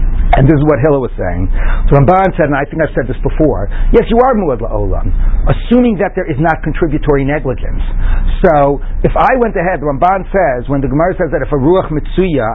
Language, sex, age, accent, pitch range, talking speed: English, male, 60-79, American, 125-175 Hz, 215 wpm